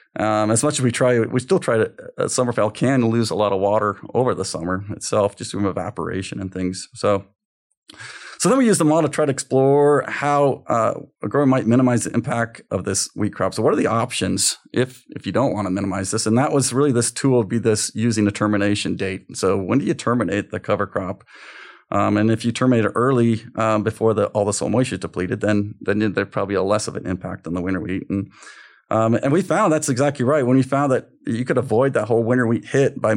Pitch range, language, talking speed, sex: 105-130 Hz, English, 245 wpm, male